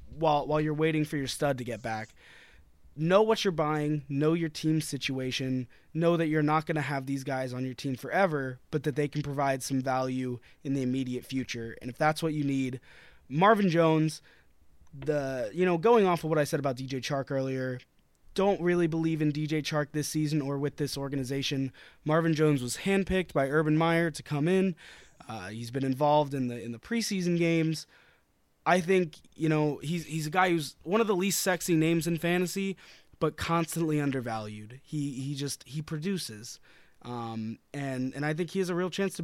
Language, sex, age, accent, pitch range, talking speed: English, male, 20-39, American, 135-170 Hz, 200 wpm